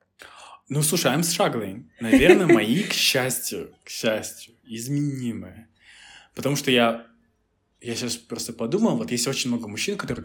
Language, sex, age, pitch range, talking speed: Russian, male, 20-39, 105-135 Hz, 140 wpm